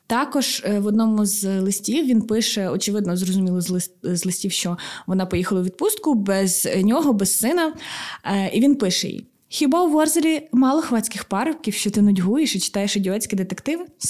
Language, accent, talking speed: Ukrainian, native, 160 wpm